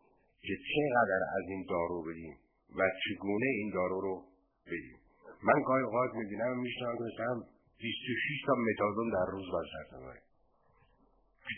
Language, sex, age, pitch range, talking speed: Persian, male, 50-69, 105-135 Hz, 135 wpm